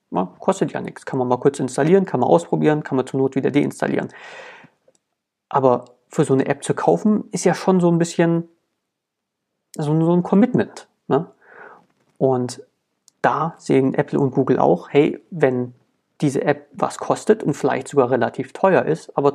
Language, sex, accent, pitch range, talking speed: German, male, German, 130-170 Hz, 165 wpm